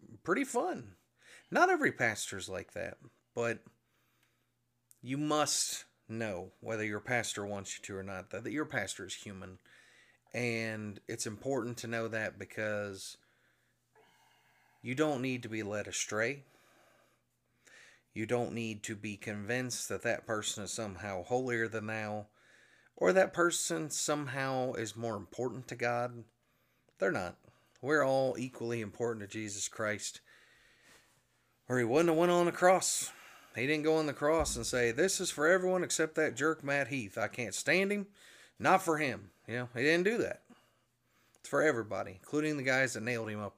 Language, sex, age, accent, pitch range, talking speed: English, male, 30-49, American, 110-140 Hz, 165 wpm